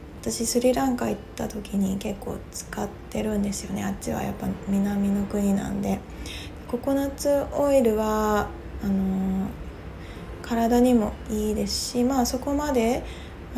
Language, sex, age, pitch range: Japanese, female, 20-39, 195-245 Hz